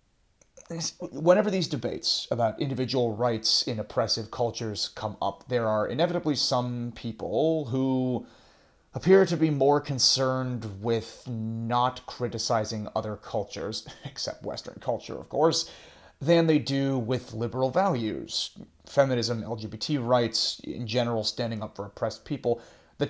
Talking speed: 125 wpm